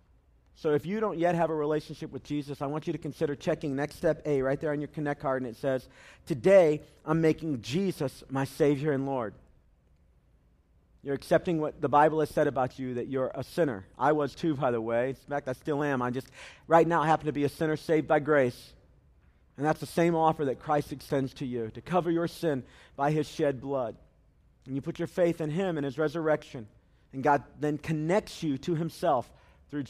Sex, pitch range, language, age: male, 130-160 Hz, English, 50-69